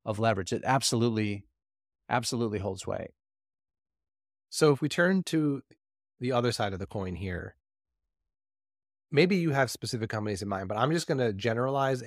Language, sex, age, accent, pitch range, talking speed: English, male, 30-49, American, 95-120 Hz, 160 wpm